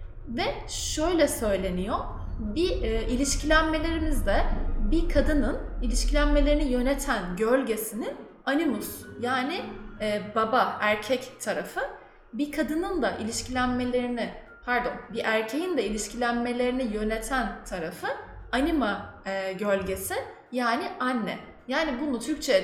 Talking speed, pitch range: 95 wpm, 210-270 Hz